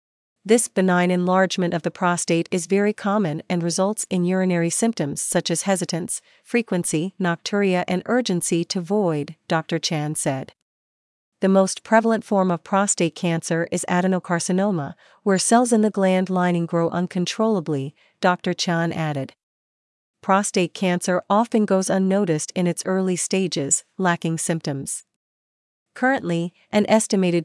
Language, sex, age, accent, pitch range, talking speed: English, female, 40-59, American, 170-200 Hz, 130 wpm